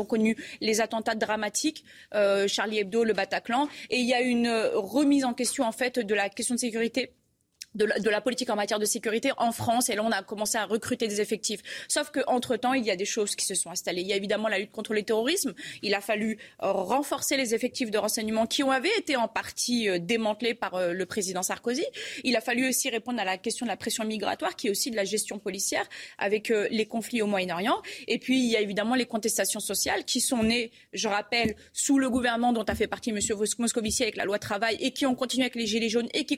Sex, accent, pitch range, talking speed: female, French, 215-255 Hz, 240 wpm